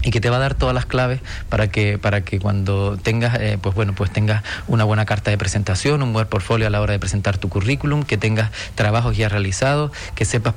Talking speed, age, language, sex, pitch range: 240 wpm, 30-49, Spanish, male, 105-125 Hz